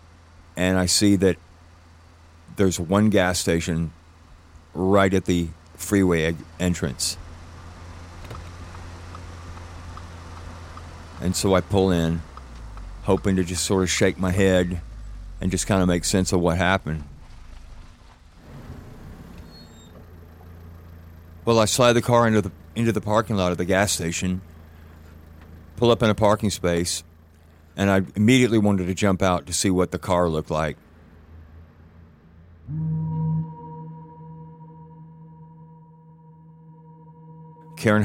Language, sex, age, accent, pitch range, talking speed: English, male, 40-59, American, 85-110 Hz, 110 wpm